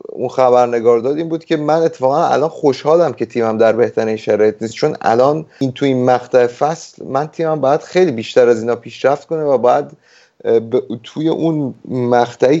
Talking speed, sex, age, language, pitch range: 165 wpm, male, 30-49, Persian, 120-150 Hz